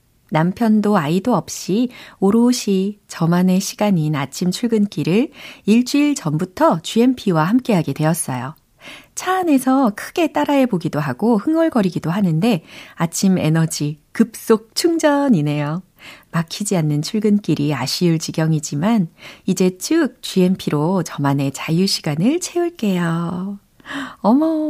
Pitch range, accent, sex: 155-230 Hz, native, female